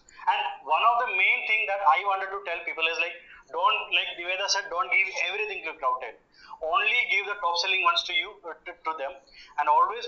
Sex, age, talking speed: male, 20-39, 220 wpm